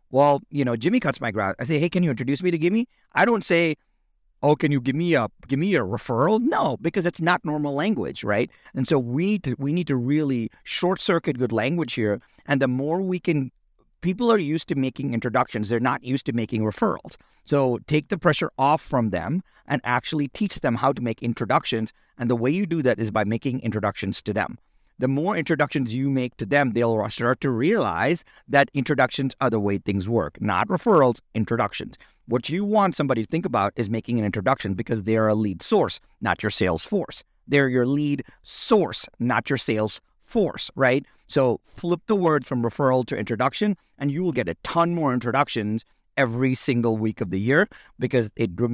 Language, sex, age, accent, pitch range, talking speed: English, male, 40-59, American, 115-155 Hz, 210 wpm